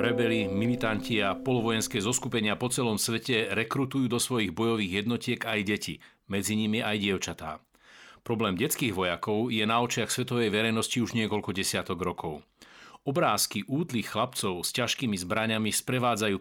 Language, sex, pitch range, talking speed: Slovak, male, 105-120 Hz, 140 wpm